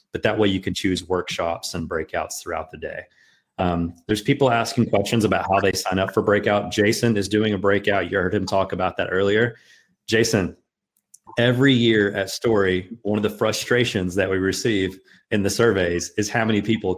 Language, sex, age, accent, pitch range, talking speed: English, male, 30-49, American, 95-115 Hz, 195 wpm